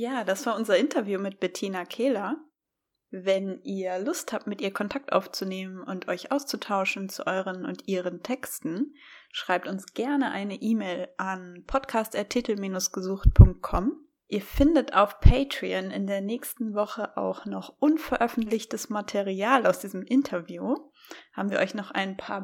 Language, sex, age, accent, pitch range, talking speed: German, female, 20-39, German, 195-255 Hz, 140 wpm